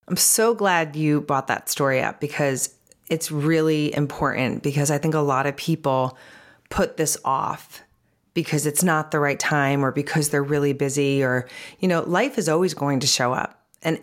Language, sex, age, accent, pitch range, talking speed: English, female, 30-49, American, 145-180 Hz, 190 wpm